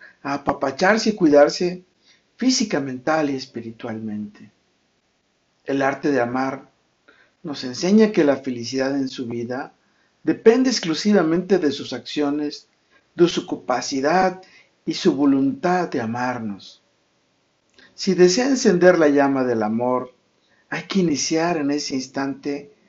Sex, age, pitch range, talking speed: male, 50-69, 130-180 Hz, 120 wpm